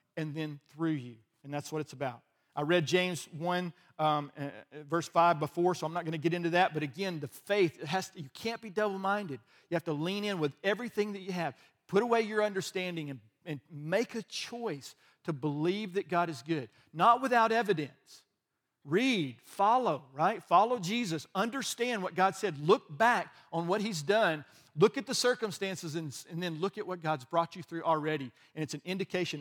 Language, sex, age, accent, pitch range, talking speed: English, male, 50-69, American, 150-195 Hz, 200 wpm